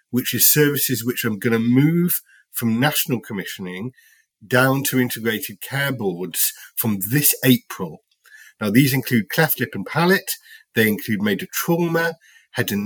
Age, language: 50-69, English